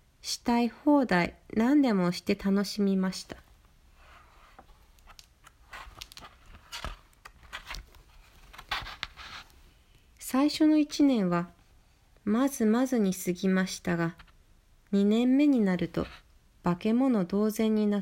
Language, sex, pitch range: Japanese, female, 175-235 Hz